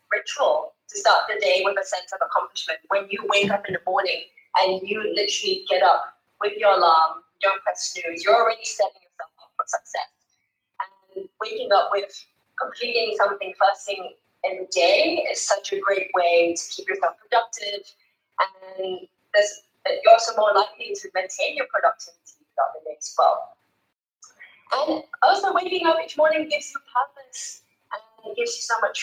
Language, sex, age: English, female, 20-39